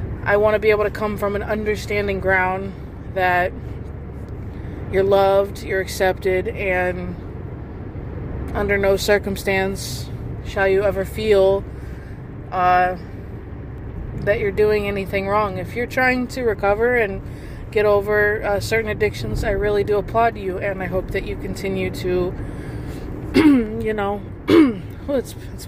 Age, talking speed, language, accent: 20-39, 135 wpm, English, American